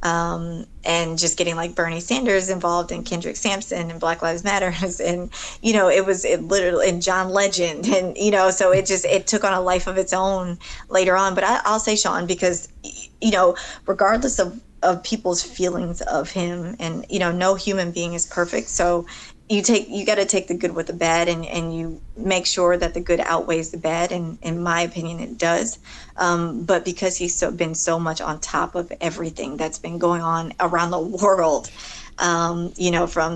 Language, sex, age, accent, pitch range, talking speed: English, female, 20-39, American, 170-190 Hz, 210 wpm